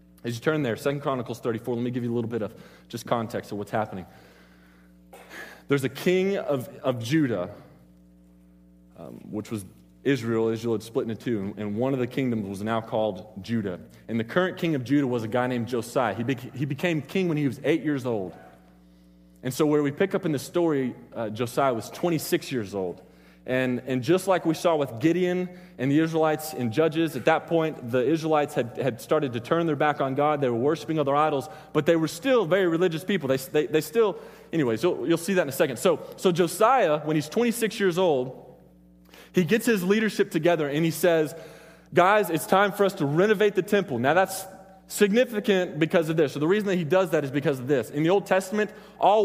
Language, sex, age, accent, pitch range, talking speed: English, male, 30-49, American, 120-175 Hz, 215 wpm